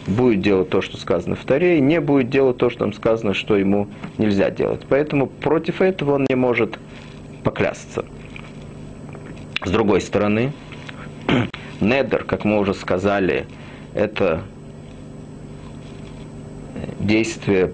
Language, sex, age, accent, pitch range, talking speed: Russian, male, 30-49, native, 100-140 Hz, 125 wpm